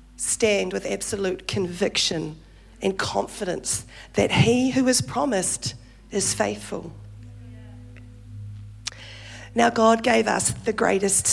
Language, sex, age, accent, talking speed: English, female, 40-59, Australian, 100 wpm